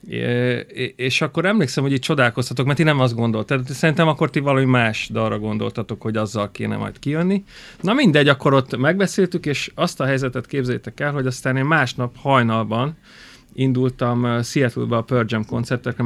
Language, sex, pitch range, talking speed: Hungarian, male, 115-140 Hz, 170 wpm